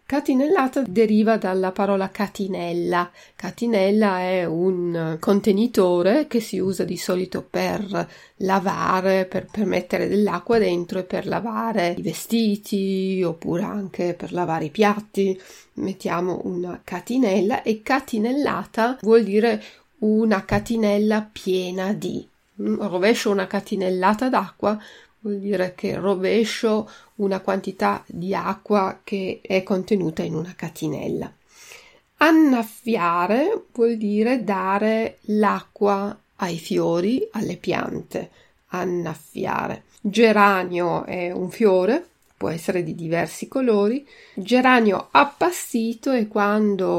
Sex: female